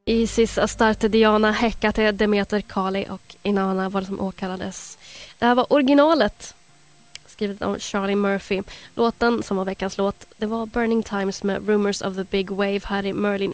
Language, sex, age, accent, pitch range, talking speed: English, female, 20-39, Swedish, 195-230 Hz, 170 wpm